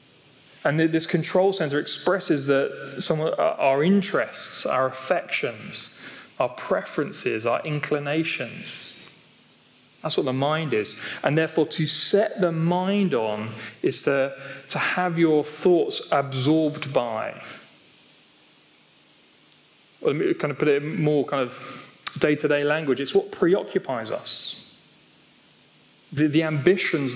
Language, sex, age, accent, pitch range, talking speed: English, male, 30-49, British, 145-180 Hz, 125 wpm